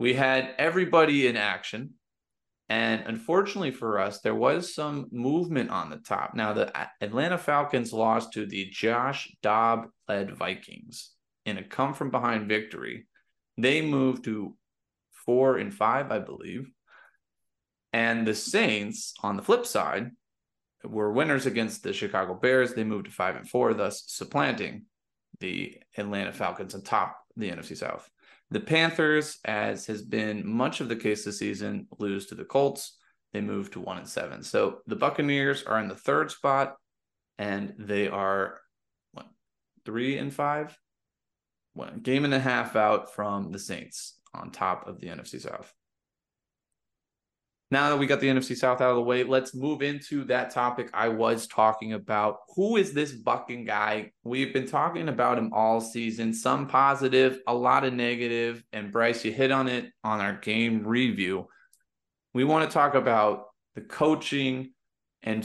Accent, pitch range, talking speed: American, 110-140 Hz, 165 wpm